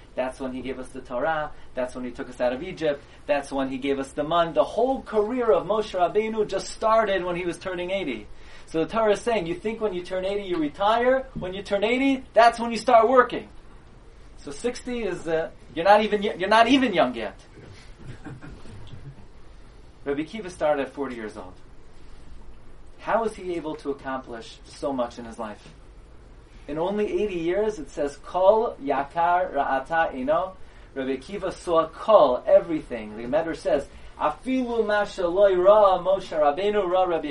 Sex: male